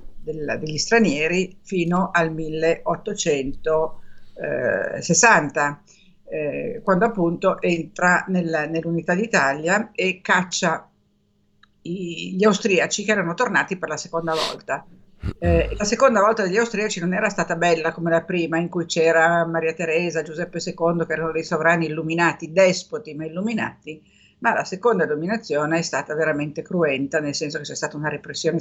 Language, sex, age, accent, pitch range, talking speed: Italian, female, 50-69, native, 160-190 Hz, 135 wpm